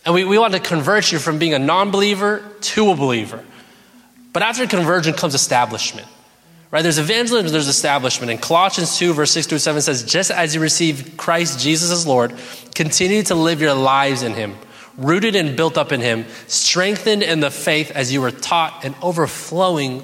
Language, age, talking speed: English, 20-39, 185 wpm